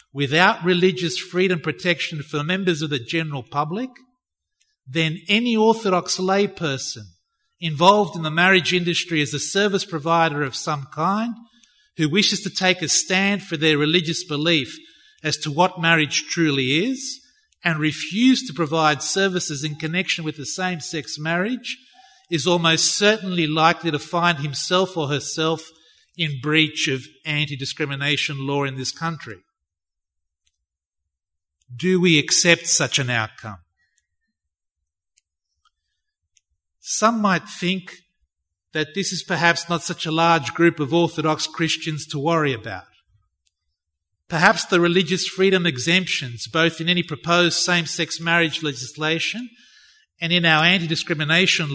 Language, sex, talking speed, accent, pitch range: English, male, 130 wpm, Australian, 145-185 Hz